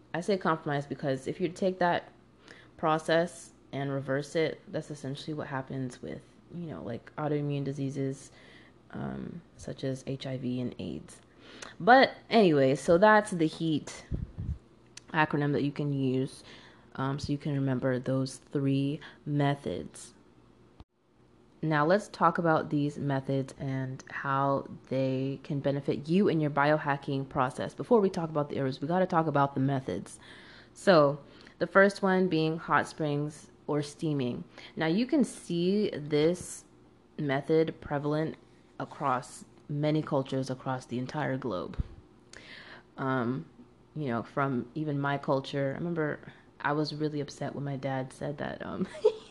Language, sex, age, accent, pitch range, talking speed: English, female, 20-39, American, 135-160 Hz, 145 wpm